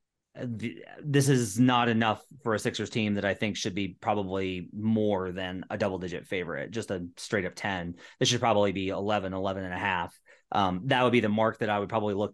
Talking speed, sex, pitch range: 215 wpm, male, 105-145 Hz